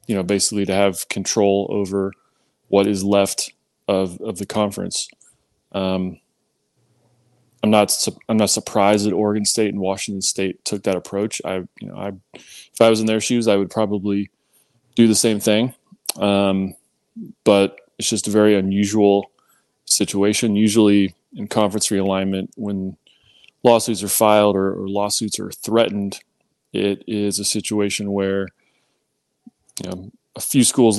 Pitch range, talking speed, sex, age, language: 95-110 Hz, 145 wpm, male, 20-39, English